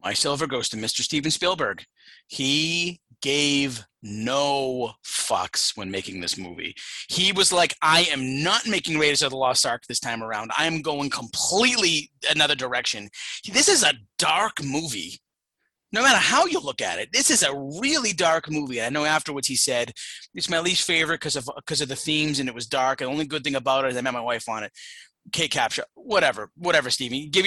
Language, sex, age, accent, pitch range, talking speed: English, male, 30-49, American, 135-175 Hz, 200 wpm